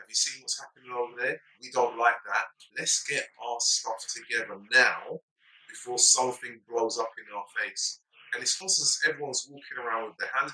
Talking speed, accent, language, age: 190 wpm, British, English, 20-39